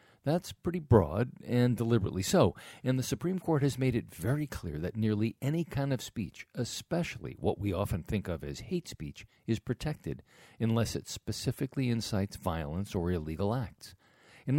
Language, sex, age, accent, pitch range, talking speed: English, male, 50-69, American, 100-130 Hz, 170 wpm